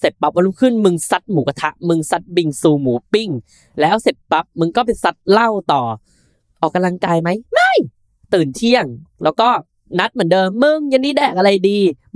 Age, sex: 10-29, female